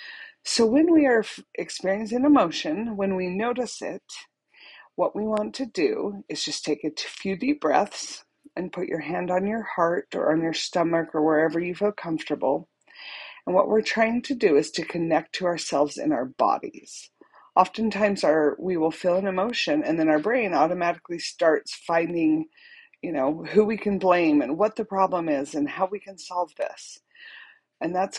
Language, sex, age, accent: English, female, 40-59, American